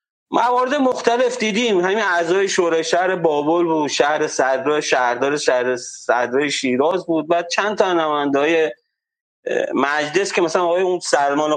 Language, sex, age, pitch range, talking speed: Persian, male, 40-59, 150-215 Hz, 140 wpm